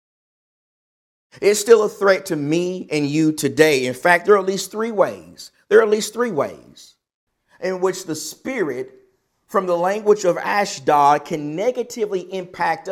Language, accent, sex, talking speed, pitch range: English, American, male, 165 wpm, 160-215 Hz